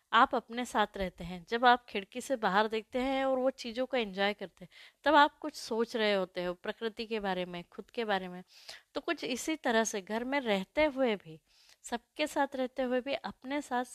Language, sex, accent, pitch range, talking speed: Hindi, female, native, 205-265 Hz, 220 wpm